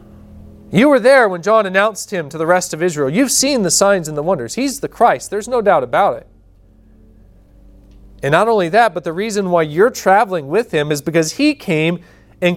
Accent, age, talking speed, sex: American, 40-59, 210 wpm, male